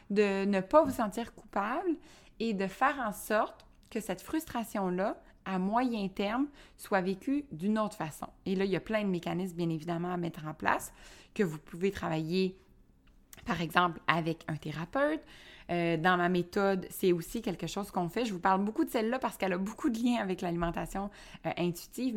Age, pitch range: 20-39, 175-225 Hz